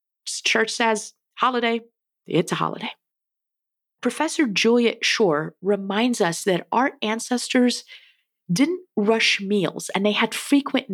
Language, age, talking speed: English, 30-49, 115 wpm